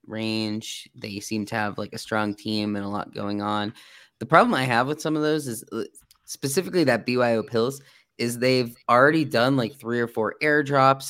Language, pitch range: English, 105-125 Hz